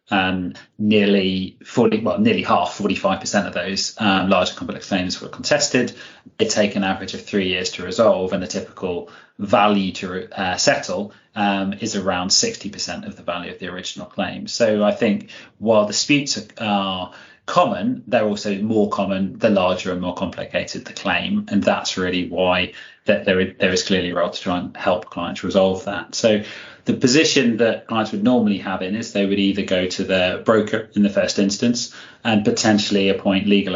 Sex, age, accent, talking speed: male, 30-49, British, 185 wpm